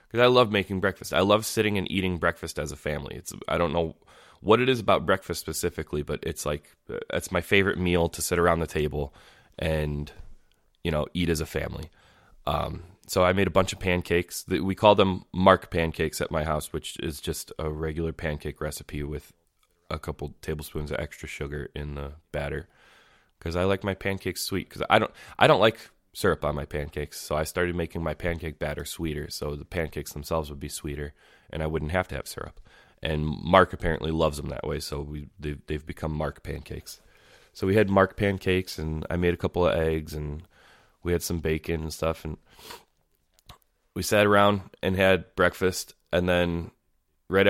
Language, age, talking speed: English, 20-39, 200 wpm